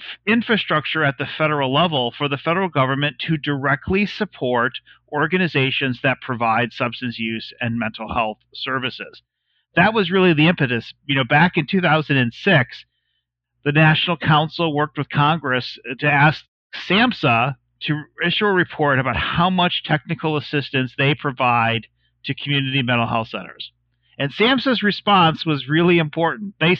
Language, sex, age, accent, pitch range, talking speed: English, male, 40-59, American, 130-175 Hz, 150 wpm